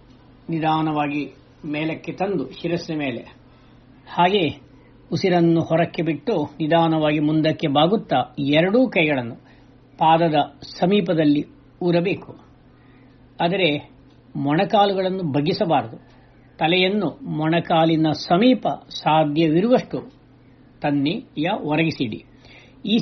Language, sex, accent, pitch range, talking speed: Kannada, female, native, 135-175 Hz, 70 wpm